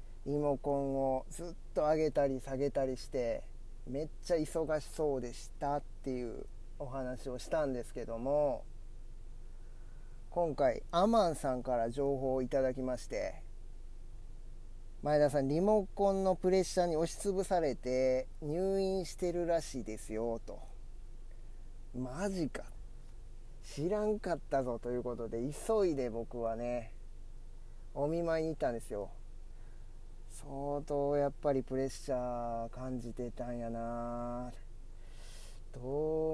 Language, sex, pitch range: Japanese, male, 115-150 Hz